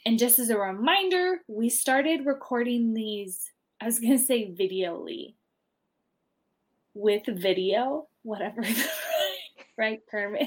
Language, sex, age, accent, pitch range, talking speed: English, female, 20-39, American, 195-245 Hz, 115 wpm